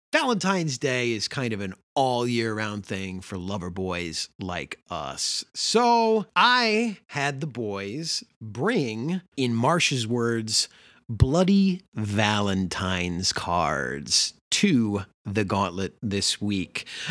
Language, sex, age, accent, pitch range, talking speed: English, male, 30-49, American, 100-150 Hz, 105 wpm